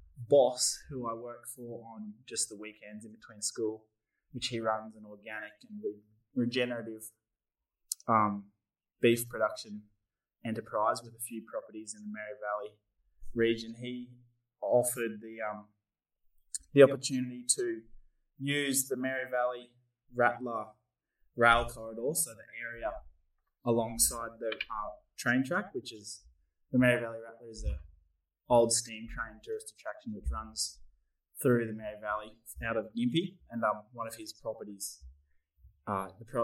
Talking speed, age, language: 140 wpm, 20-39, English